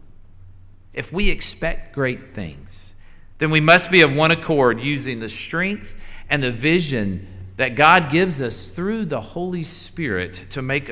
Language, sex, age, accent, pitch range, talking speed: English, male, 50-69, American, 95-150 Hz, 155 wpm